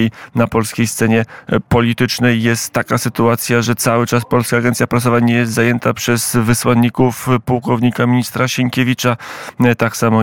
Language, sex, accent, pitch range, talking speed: Polish, male, native, 115-125 Hz, 135 wpm